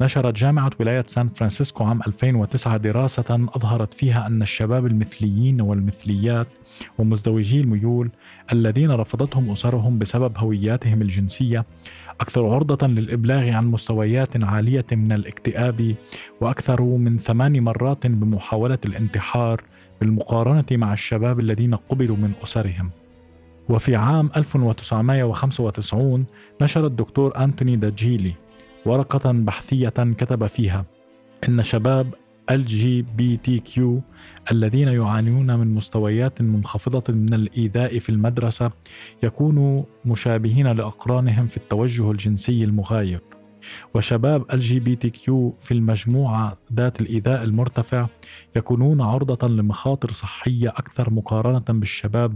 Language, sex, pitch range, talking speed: Arabic, male, 110-125 Hz, 100 wpm